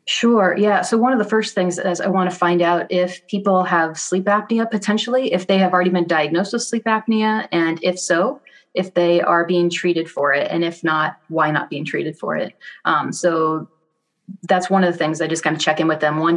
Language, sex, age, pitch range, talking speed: English, female, 30-49, 160-190 Hz, 235 wpm